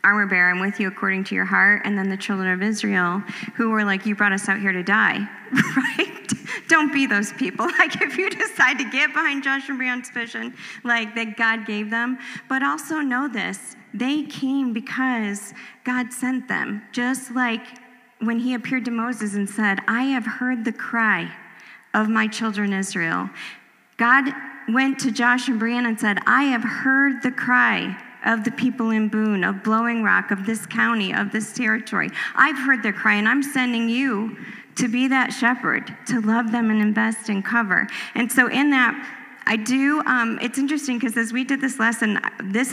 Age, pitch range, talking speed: 40-59, 210-250 Hz, 190 wpm